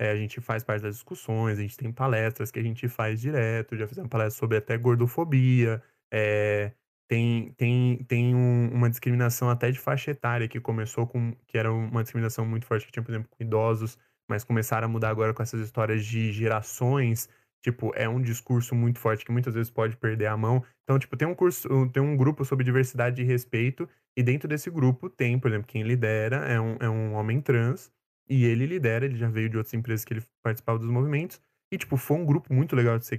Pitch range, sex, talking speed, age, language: 115-130 Hz, male, 220 wpm, 20-39, Portuguese